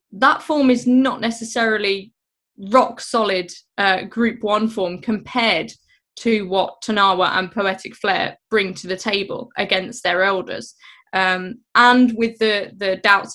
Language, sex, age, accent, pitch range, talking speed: English, female, 20-39, British, 190-230 Hz, 130 wpm